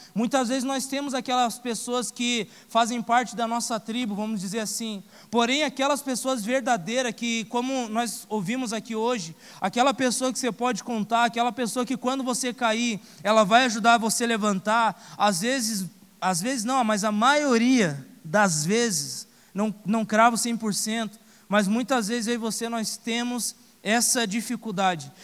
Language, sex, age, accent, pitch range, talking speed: Portuguese, male, 20-39, Brazilian, 220-250 Hz, 155 wpm